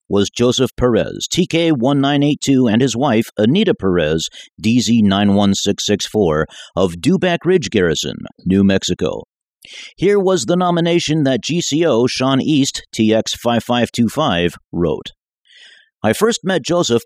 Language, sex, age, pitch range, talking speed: English, male, 50-69, 95-140 Hz, 105 wpm